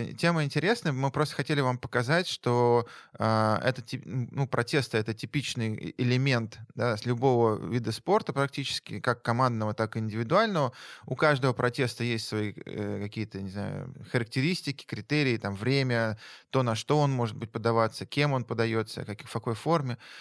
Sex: male